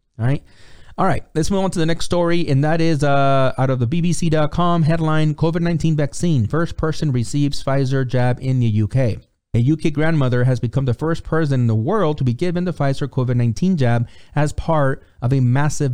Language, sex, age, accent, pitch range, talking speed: English, male, 30-49, American, 115-155 Hz, 200 wpm